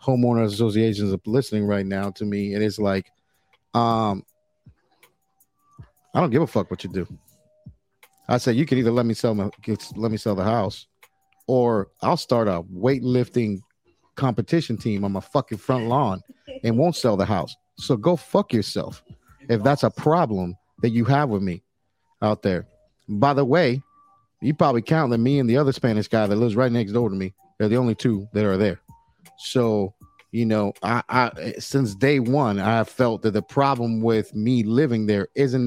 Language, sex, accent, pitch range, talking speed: English, male, American, 105-135 Hz, 190 wpm